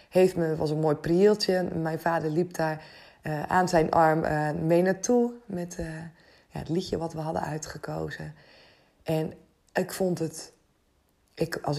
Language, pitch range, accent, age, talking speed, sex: Dutch, 155-185 Hz, Dutch, 20-39, 160 wpm, female